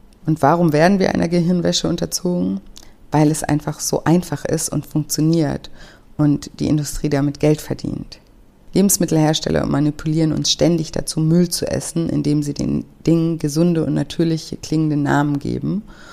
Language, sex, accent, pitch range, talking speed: German, female, German, 150-170 Hz, 145 wpm